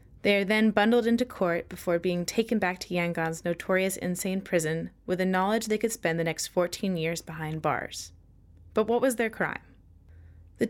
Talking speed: 185 wpm